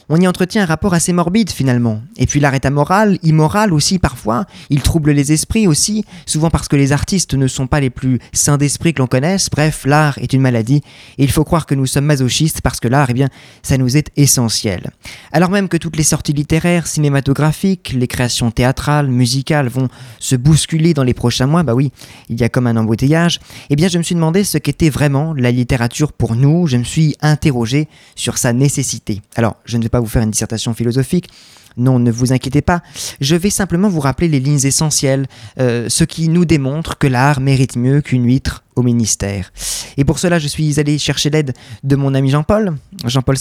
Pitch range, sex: 125-155 Hz, male